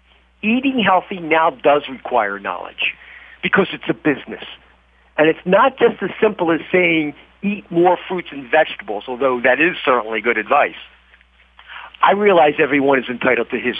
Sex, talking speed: male, 155 wpm